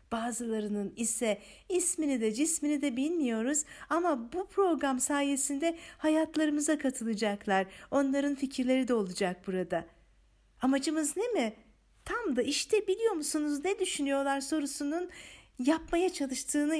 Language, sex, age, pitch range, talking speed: Turkish, female, 50-69, 235-315 Hz, 110 wpm